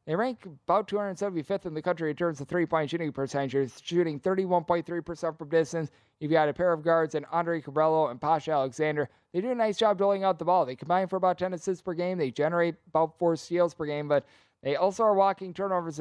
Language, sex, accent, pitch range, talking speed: English, male, American, 150-175 Hz, 220 wpm